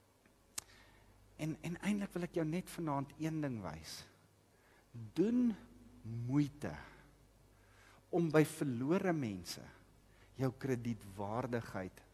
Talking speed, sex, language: 100 wpm, male, English